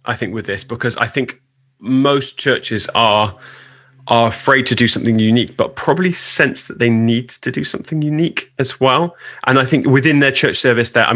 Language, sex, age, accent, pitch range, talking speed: English, male, 20-39, British, 115-130 Hz, 200 wpm